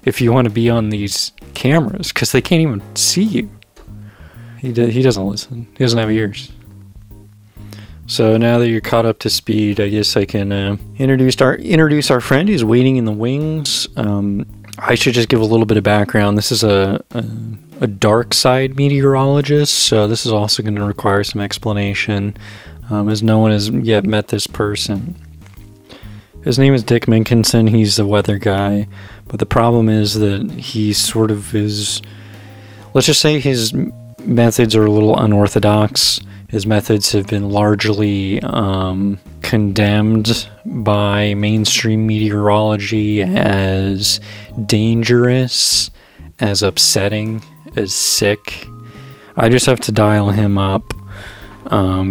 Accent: American